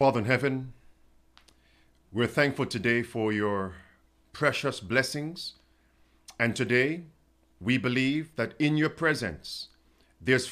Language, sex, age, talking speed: English, male, 50-69, 110 wpm